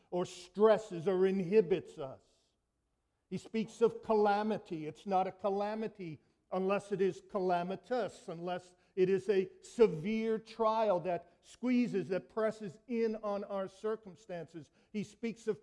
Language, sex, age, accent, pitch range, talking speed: English, male, 50-69, American, 190-225 Hz, 130 wpm